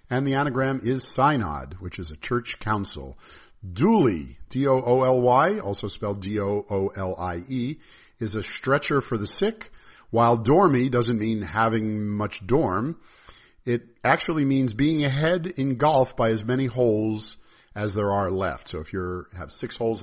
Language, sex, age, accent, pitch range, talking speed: English, male, 50-69, American, 95-125 Hz, 145 wpm